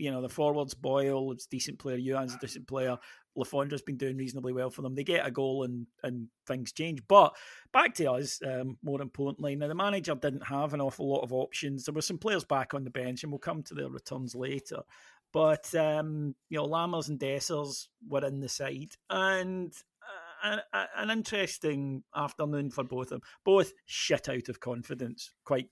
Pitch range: 130-150 Hz